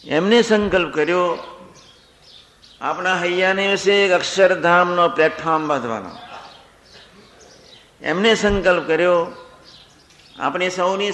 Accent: native